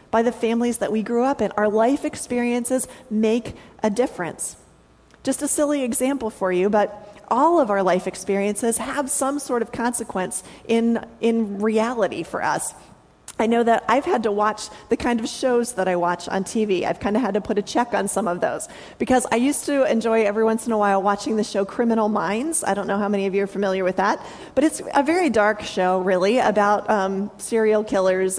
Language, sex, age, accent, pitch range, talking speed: English, female, 30-49, American, 205-270 Hz, 215 wpm